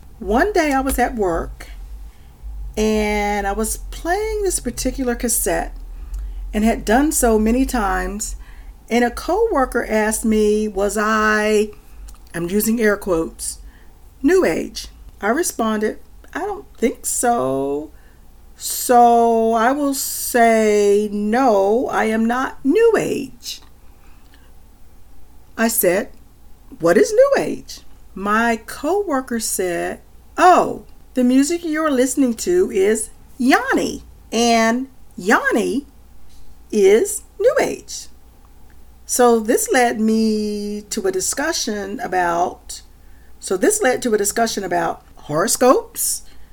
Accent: American